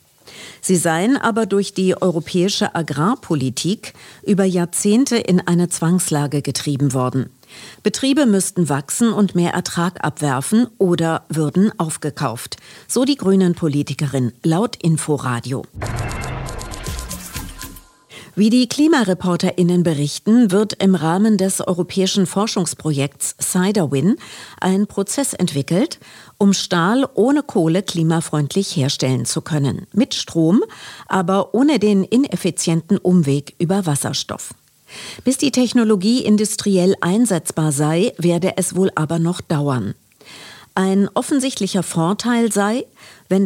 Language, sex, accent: German, female, German